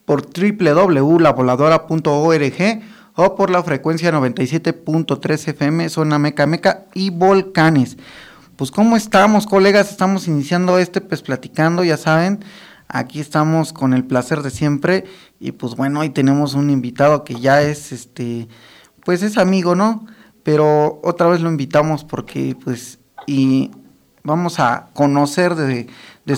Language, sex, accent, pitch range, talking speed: Spanish, male, Mexican, 135-175 Hz, 135 wpm